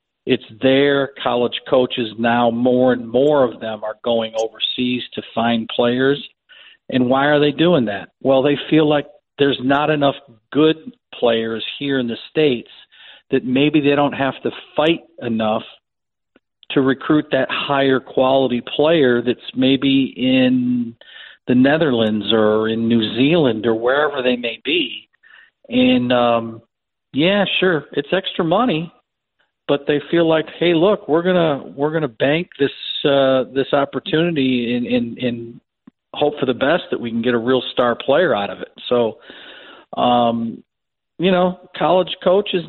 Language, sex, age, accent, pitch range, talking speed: English, male, 50-69, American, 120-155 Hz, 155 wpm